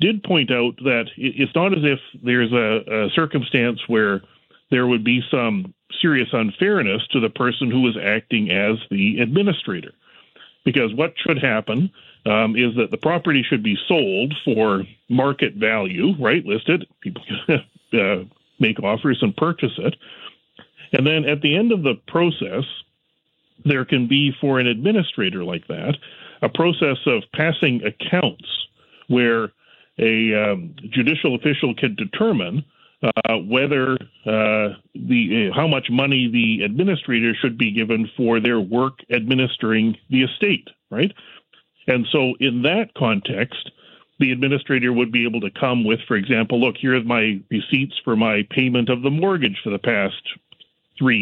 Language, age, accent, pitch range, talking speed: English, 40-59, American, 115-150 Hz, 150 wpm